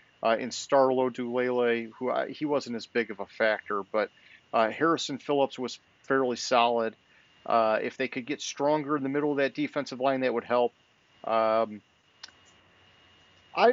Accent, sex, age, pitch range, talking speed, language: American, male, 40-59, 115-150 Hz, 165 wpm, English